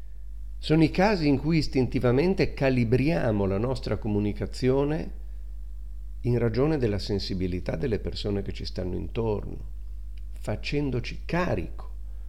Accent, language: native, Italian